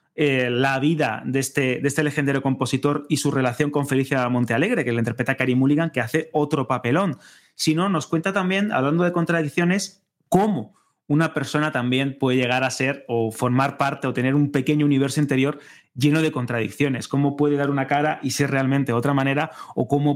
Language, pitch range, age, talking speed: Spanish, 125-150 Hz, 30-49, 190 wpm